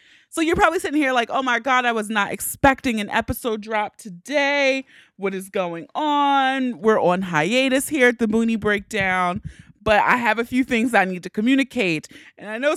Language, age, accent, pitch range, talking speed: English, 30-49, American, 185-255 Hz, 195 wpm